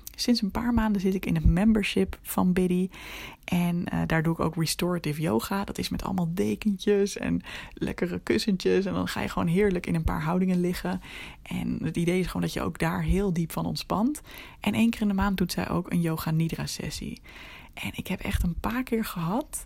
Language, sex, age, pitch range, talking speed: Dutch, female, 20-39, 165-205 Hz, 220 wpm